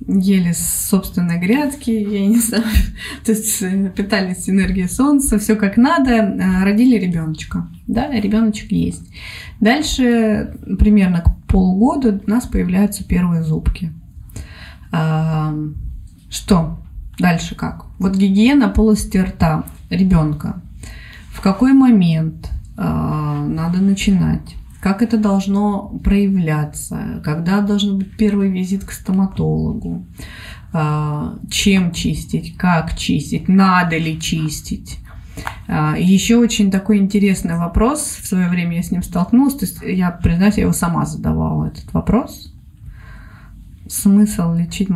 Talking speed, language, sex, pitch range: 110 wpm, Russian, female, 155-205 Hz